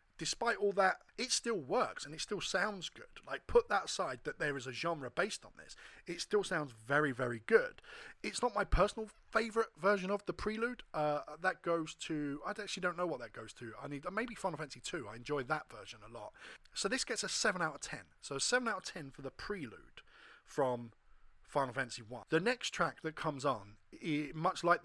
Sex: male